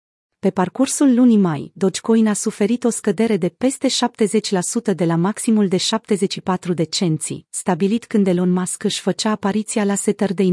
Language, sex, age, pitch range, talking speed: Romanian, female, 30-49, 180-220 Hz, 155 wpm